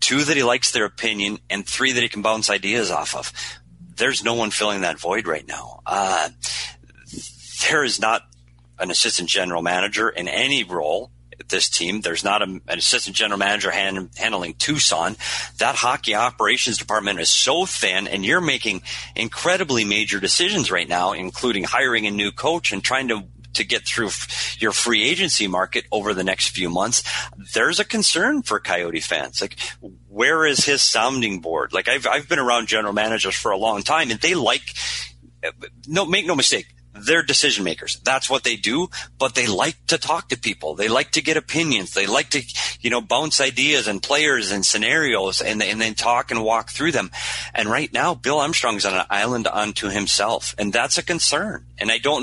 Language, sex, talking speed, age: English, male, 190 wpm, 40-59